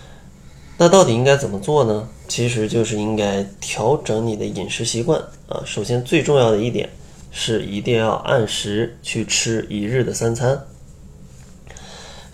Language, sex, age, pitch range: Chinese, male, 20-39, 105-130 Hz